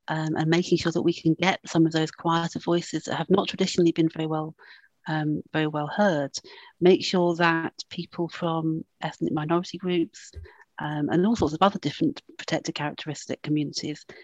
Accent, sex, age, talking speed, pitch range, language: British, female, 40-59, 165 wpm, 160-185 Hz, English